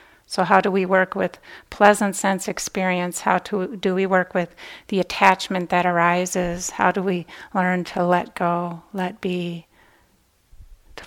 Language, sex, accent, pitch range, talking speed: English, female, American, 180-215 Hz, 155 wpm